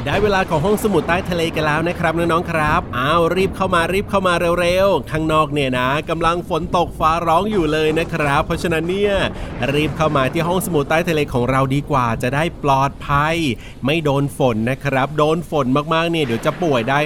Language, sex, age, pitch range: Thai, male, 30-49, 135-165 Hz